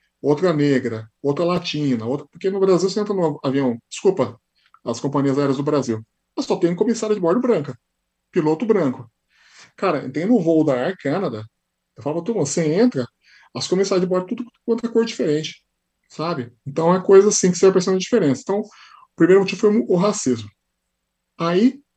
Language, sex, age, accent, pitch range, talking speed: Portuguese, male, 20-39, Brazilian, 135-175 Hz, 185 wpm